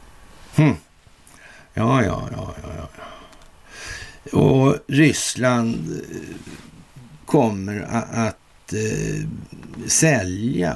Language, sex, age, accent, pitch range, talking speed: Swedish, male, 60-79, native, 80-115 Hz, 75 wpm